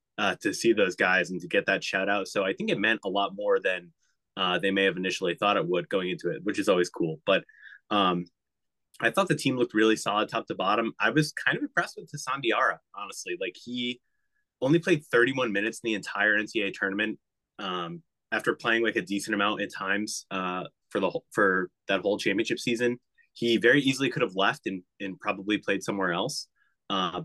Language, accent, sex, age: English, American, male, 20-39